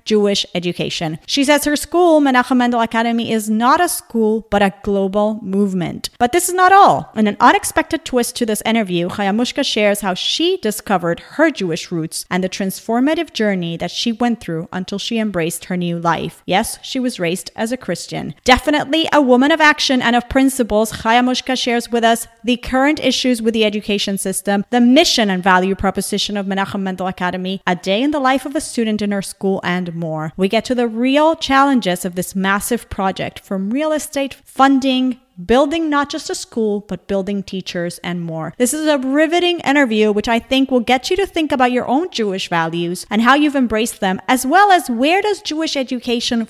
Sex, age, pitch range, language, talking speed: female, 30-49, 190-265 Hz, English, 200 wpm